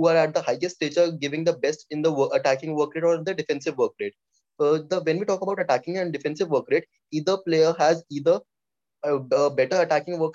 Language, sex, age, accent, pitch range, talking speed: English, male, 20-39, Indian, 145-170 Hz, 225 wpm